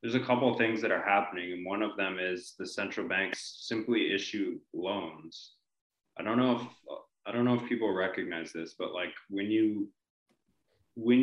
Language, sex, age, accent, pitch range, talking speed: English, male, 20-39, American, 90-115 Hz, 185 wpm